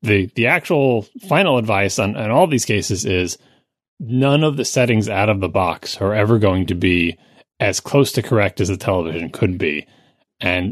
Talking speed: 190 wpm